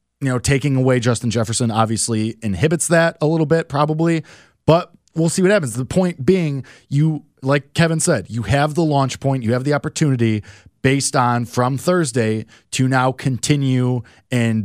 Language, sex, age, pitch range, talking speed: English, male, 20-39, 120-165 Hz, 170 wpm